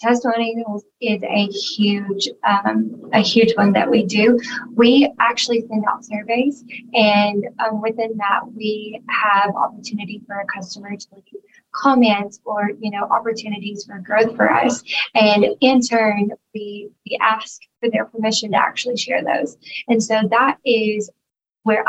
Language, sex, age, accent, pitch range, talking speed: English, female, 20-39, American, 205-230 Hz, 150 wpm